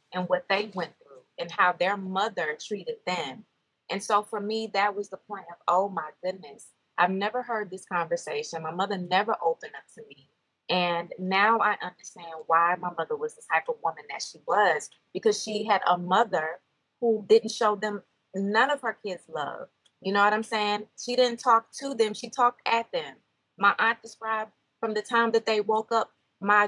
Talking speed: 200 wpm